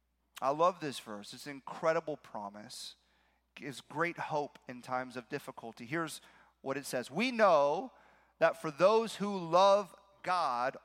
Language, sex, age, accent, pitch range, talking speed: English, male, 40-59, American, 140-235 Hz, 155 wpm